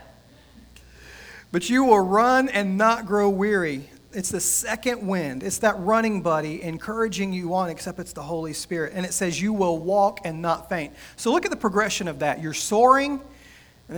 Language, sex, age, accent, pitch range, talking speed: English, male, 40-59, American, 155-205 Hz, 185 wpm